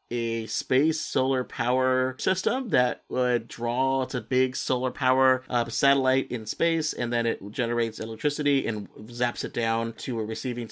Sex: male